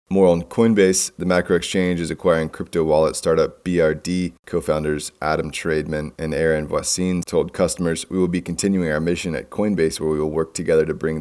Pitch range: 80-90 Hz